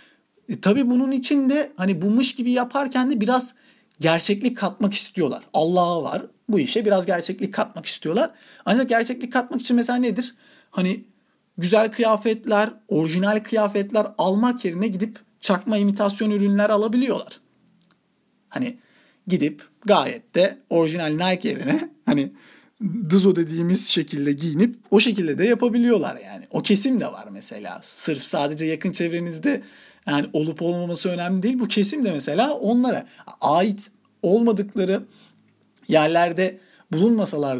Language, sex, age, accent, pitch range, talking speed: Turkish, male, 40-59, native, 185-240 Hz, 130 wpm